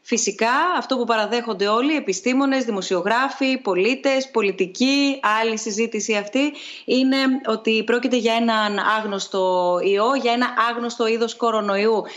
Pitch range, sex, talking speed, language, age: 210-265 Hz, female, 120 wpm, Greek, 20-39